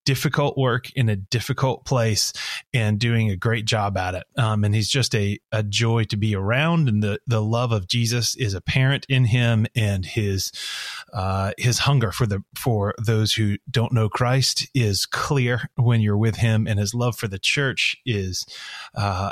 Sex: male